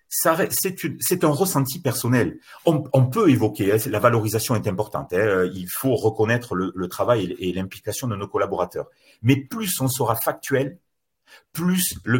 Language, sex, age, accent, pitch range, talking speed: French, male, 40-59, French, 105-140 Hz, 165 wpm